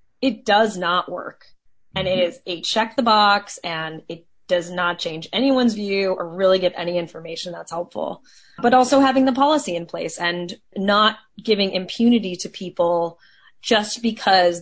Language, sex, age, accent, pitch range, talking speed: English, female, 20-39, American, 175-220 Hz, 165 wpm